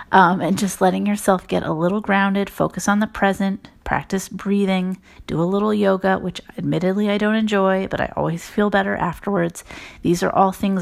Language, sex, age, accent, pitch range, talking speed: English, female, 30-49, American, 170-200 Hz, 185 wpm